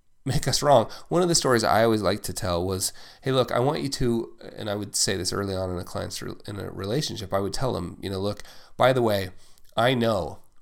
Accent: American